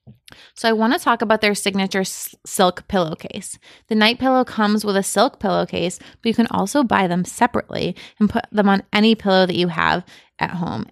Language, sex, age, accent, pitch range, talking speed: English, female, 20-39, American, 180-215 Hz, 200 wpm